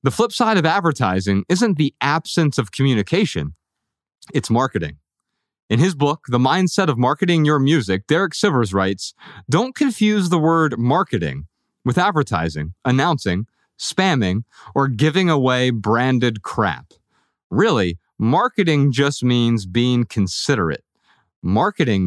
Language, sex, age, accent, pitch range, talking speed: English, male, 30-49, American, 100-160 Hz, 120 wpm